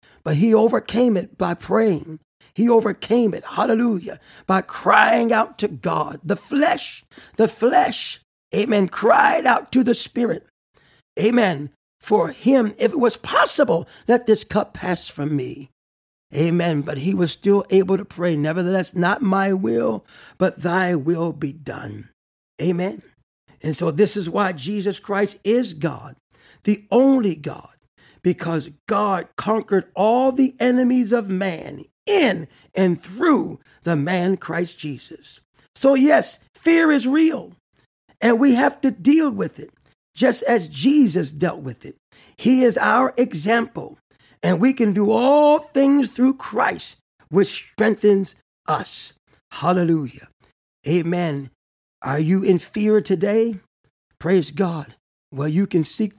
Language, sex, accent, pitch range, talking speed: English, male, American, 170-235 Hz, 140 wpm